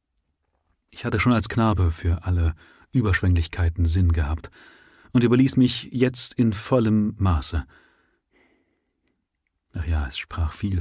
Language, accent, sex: German, German, male